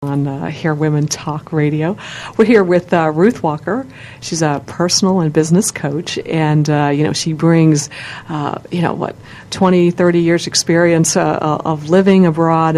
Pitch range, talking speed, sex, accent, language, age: 150-175 Hz, 170 wpm, female, American, English, 50-69